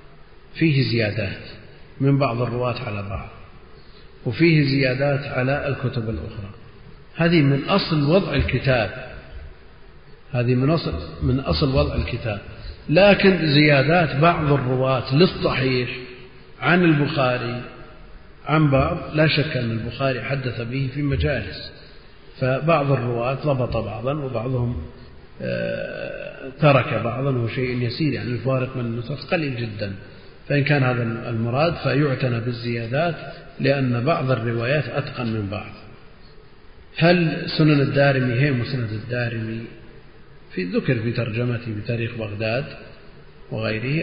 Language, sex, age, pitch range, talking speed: Arabic, male, 40-59, 115-140 Hz, 110 wpm